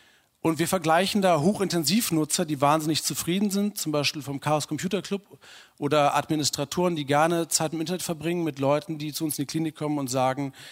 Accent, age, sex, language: German, 40-59, male, German